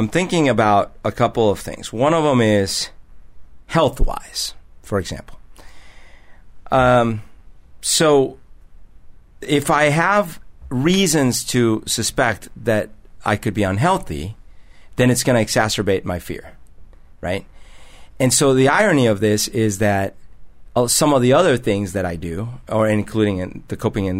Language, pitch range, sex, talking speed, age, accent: English, 95-125 Hz, male, 145 wpm, 50-69, American